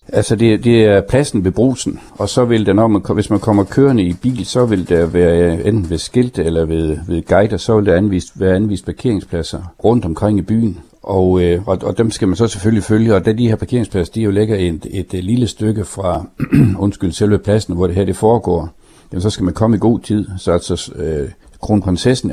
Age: 60-79